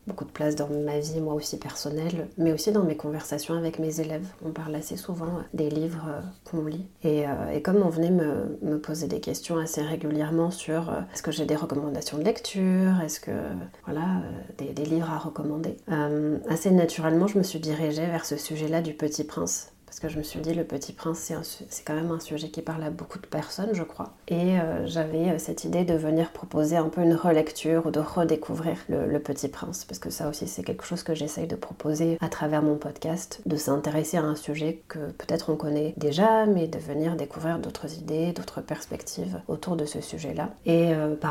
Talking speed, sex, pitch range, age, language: 225 wpm, female, 150-165 Hz, 30-49, French